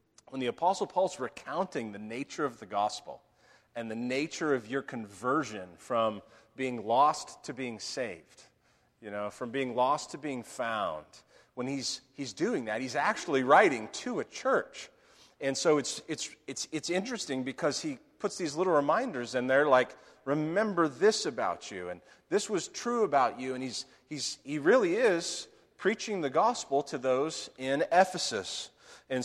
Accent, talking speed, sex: American, 165 wpm, male